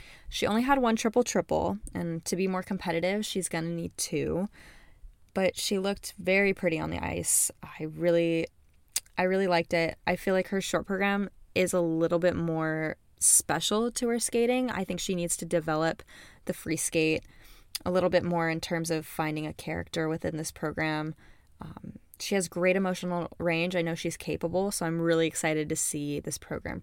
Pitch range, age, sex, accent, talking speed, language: 165-195 Hz, 10-29, female, American, 190 wpm, English